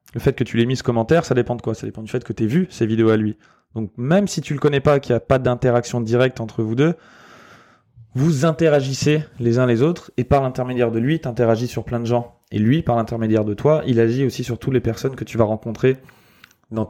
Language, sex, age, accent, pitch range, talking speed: French, male, 20-39, French, 110-135 Hz, 270 wpm